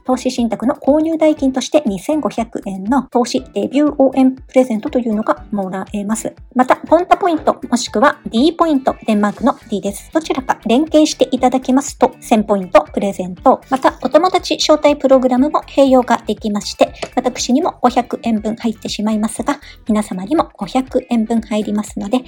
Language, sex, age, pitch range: Japanese, male, 50-69, 220-285 Hz